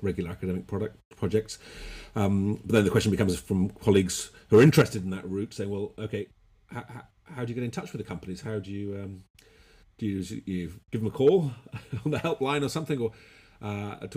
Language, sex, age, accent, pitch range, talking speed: English, male, 40-59, British, 90-105 Hz, 215 wpm